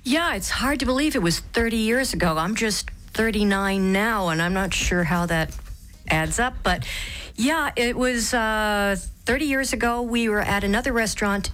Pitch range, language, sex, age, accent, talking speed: 160-205 Hz, English, female, 50-69, American, 180 wpm